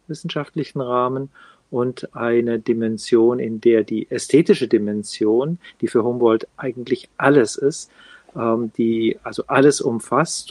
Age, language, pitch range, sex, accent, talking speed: 40-59, German, 115-145 Hz, male, German, 115 wpm